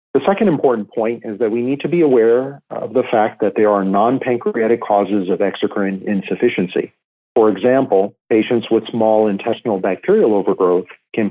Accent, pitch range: American, 100-125 Hz